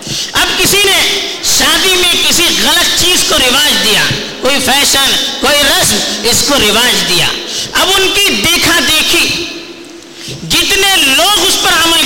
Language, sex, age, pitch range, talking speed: Urdu, female, 50-69, 215-340 Hz, 145 wpm